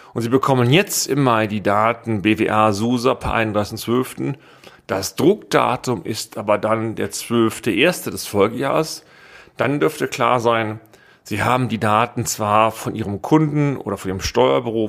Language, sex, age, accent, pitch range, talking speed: German, male, 40-59, German, 110-130 Hz, 145 wpm